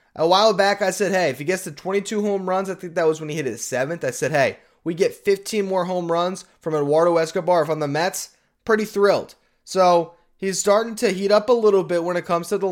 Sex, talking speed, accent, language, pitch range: male, 250 wpm, American, English, 145-195 Hz